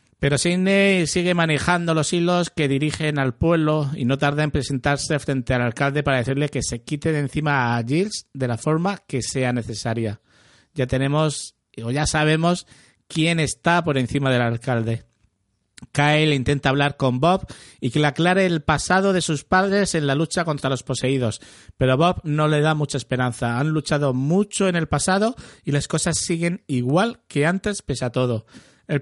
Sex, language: male, Spanish